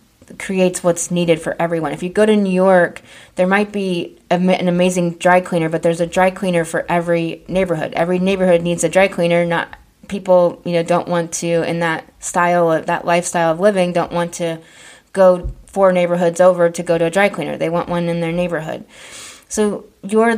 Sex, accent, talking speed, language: female, American, 200 wpm, English